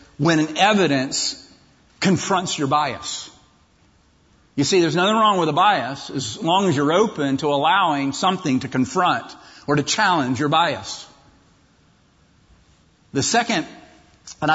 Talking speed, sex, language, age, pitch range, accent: 130 wpm, male, English, 50-69, 140-180 Hz, American